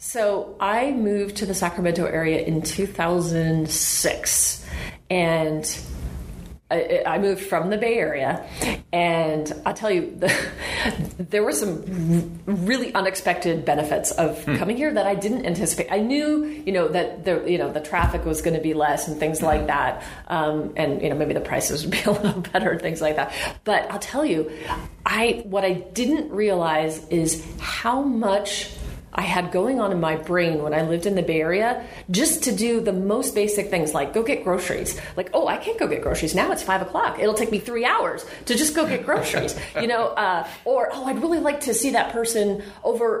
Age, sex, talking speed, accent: 30-49, female, 195 wpm, American